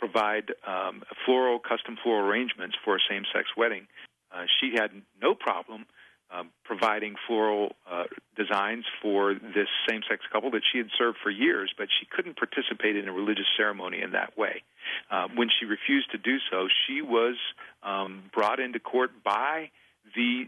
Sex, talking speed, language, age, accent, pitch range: male, 165 wpm, English, 50-69, American, 105-125 Hz